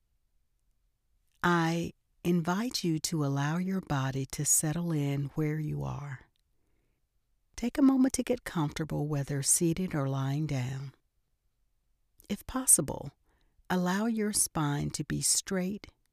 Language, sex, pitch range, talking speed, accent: English, female, 135-185 Hz, 120 wpm, American